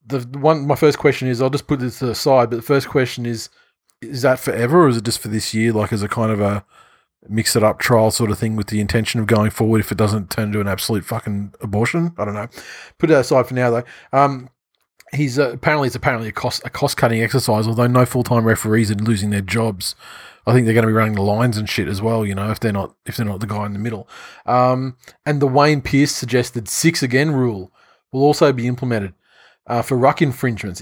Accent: Australian